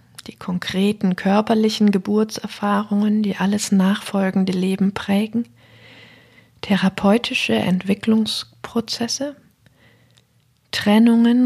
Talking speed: 65 wpm